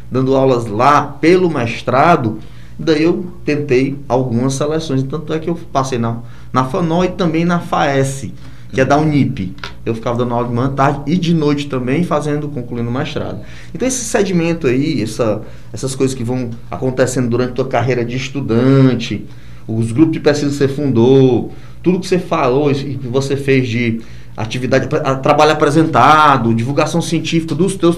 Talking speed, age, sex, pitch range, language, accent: 170 wpm, 20-39, male, 125-170 Hz, Portuguese, Brazilian